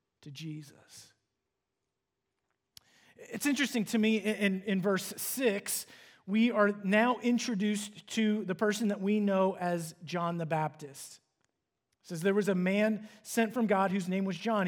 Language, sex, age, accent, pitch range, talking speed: English, male, 30-49, American, 180-220 Hz, 150 wpm